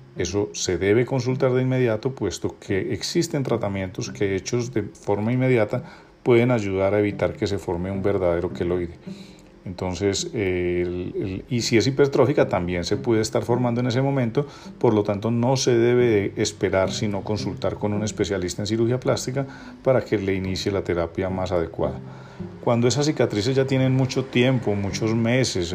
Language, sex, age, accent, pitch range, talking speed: Spanish, male, 40-59, Colombian, 95-125 Hz, 170 wpm